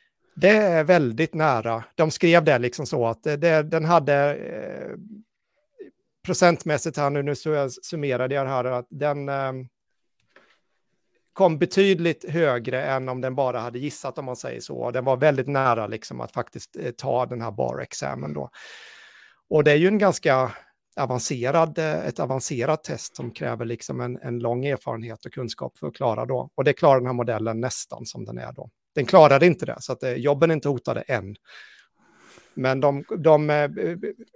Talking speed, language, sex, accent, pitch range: 180 wpm, Swedish, male, native, 125-165 Hz